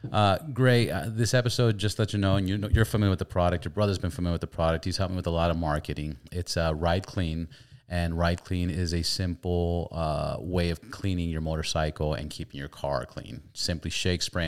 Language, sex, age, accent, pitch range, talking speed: English, male, 30-49, American, 80-100 Hz, 235 wpm